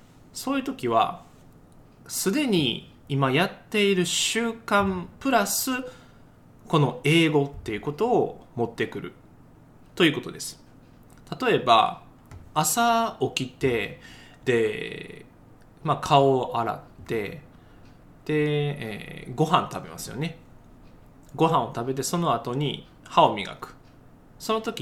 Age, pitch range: 20-39, 130-200 Hz